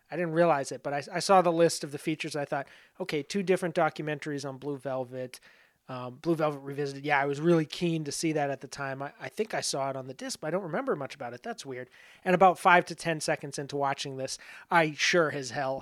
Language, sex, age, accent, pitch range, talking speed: English, male, 30-49, American, 140-165 Hz, 260 wpm